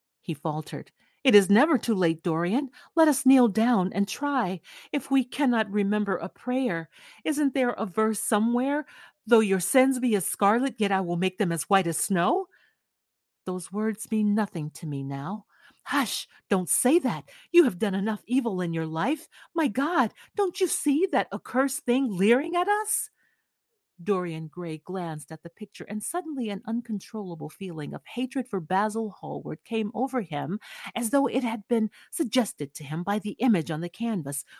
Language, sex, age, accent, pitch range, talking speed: English, female, 40-59, American, 175-250 Hz, 180 wpm